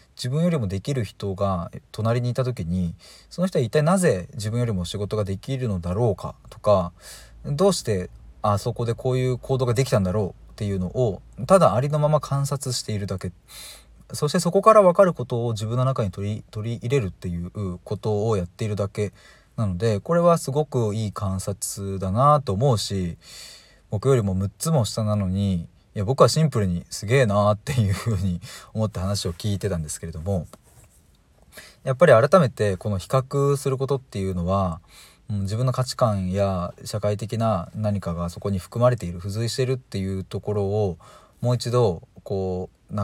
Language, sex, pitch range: Japanese, male, 95-125 Hz